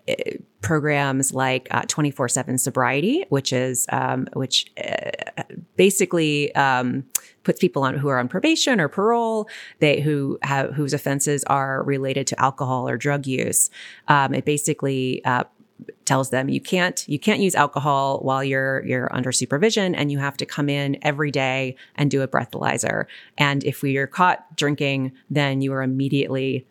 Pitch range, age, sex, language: 135-160 Hz, 30-49, female, English